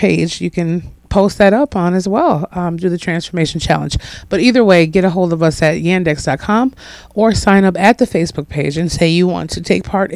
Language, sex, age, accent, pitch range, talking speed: English, female, 30-49, American, 155-190 Hz, 225 wpm